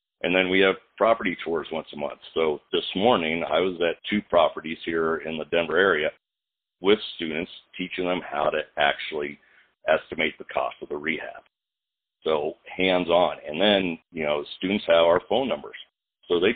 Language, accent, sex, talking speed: English, American, male, 175 wpm